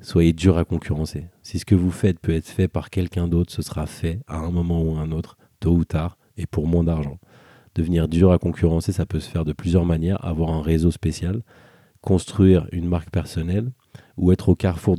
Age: 40-59